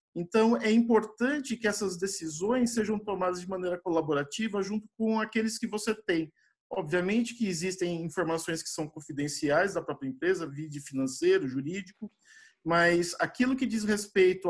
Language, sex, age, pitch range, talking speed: Portuguese, male, 50-69, 175-215 Hz, 145 wpm